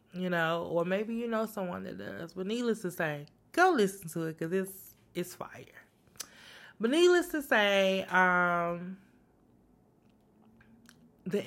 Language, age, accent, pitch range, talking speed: English, 20-39, American, 160-195 Hz, 140 wpm